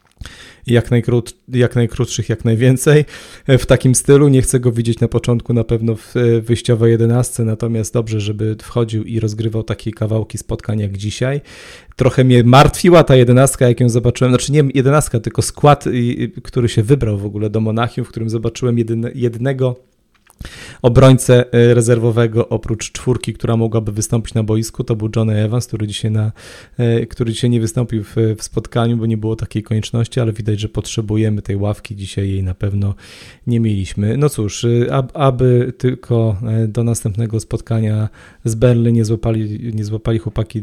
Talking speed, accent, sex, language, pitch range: 155 wpm, native, male, Polish, 110-120 Hz